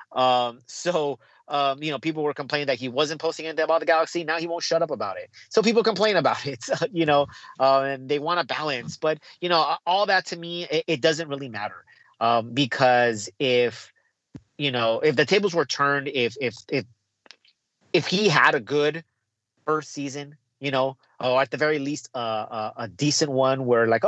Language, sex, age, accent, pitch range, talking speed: English, male, 30-49, American, 130-160 Hz, 205 wpm